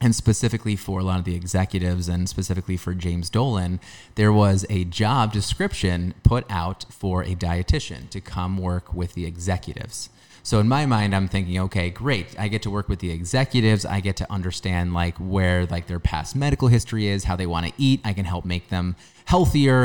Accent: American